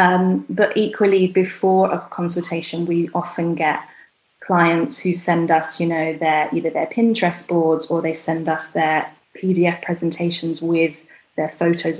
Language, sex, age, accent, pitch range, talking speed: English, female, 10-29, British, 160-180 Hz, 150 wpm